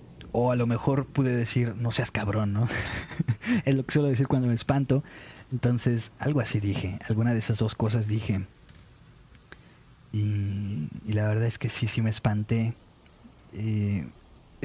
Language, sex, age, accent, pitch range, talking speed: Spanish, male, 30-49, Mexican, 105-125 Hz, 160 wpm